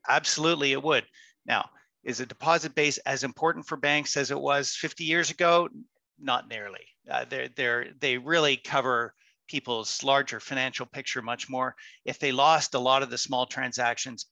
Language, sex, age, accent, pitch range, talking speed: English, male, 40-59, American, 125-150 Hz, 170 wpm